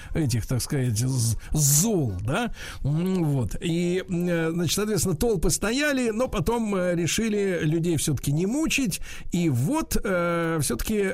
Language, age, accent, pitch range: Russian, 50-69, native, 155-225 Hz